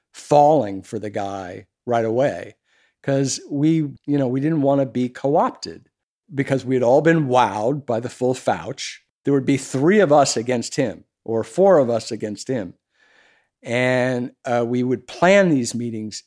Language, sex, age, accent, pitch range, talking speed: English, male, 50-69, American, 120-140 Hz, 175 wpm